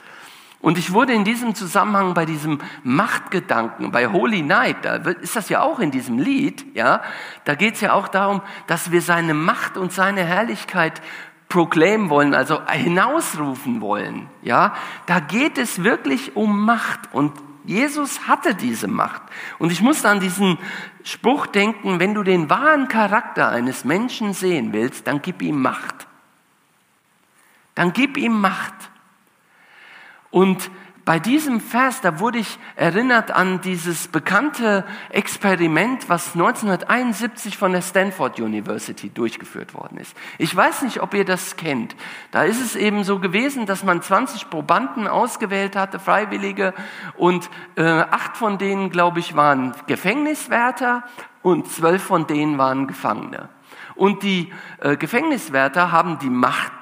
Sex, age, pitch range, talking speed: male, 50-69, 175-230 Hz, 145 wpm